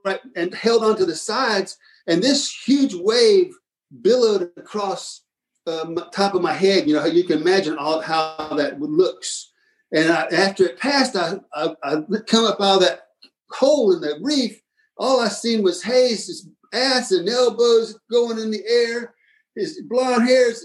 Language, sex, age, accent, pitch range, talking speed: English, male, 50-69, American, 195-290 Hz, 175 wpm